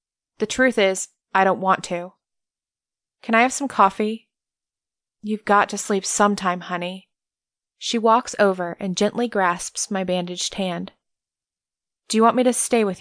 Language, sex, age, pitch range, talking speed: English, female, 20-39, 185-215 Hz, 155 wpm